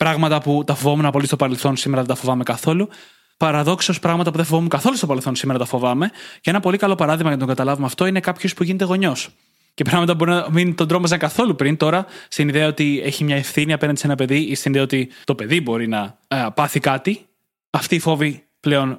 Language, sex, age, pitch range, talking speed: Greek, male, 20-39, 140-180 Hz, 230 wpm